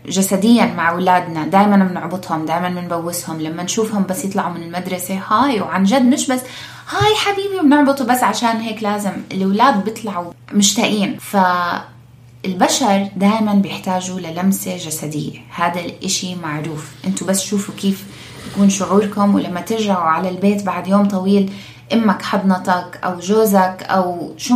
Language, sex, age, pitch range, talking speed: Arabic, female, 20-39, 170-210 Hz, 135 wpm